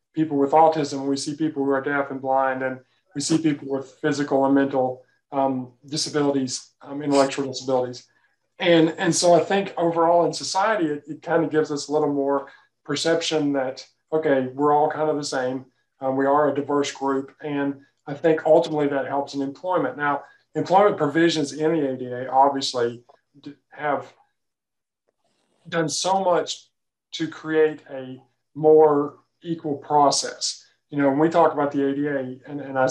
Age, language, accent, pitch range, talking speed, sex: 40-59, English, American, 135-155 Hz, 165 wpm, male